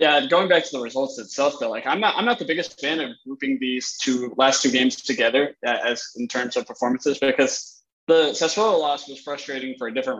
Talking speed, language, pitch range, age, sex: 230 wpm, English, 125-145 Hz, 20-39, male